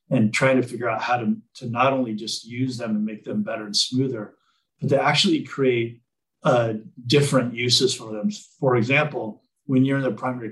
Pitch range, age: 110-130 Hz, 40-59